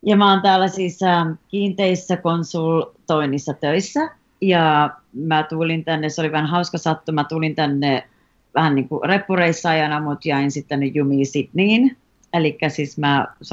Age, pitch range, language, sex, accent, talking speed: 30-49, 145-175 Hz, Finnish, female, native, 150 wpm